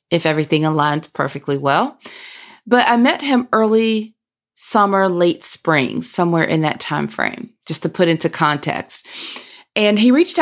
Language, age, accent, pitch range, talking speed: English, 40-59, American, 165-215 Hz, 150 wpm